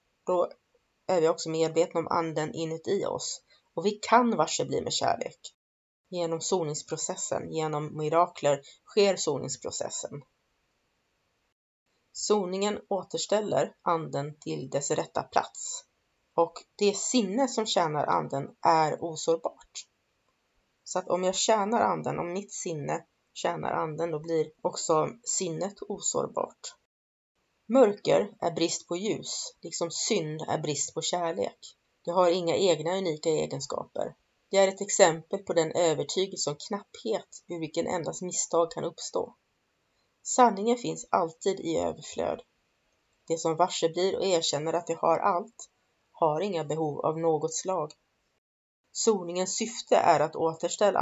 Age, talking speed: 30-49, 130 wpm